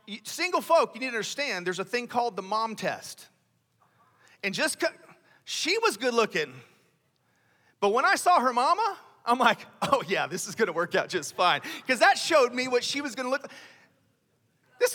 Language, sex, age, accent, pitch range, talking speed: English, male, 40-59, American, 180-270 Hz, 190 wpm